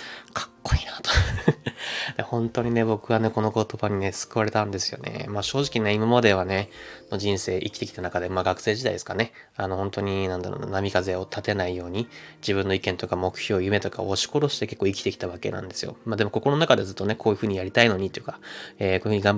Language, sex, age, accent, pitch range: Japanese, male, 20-39, native, 95-115 Hz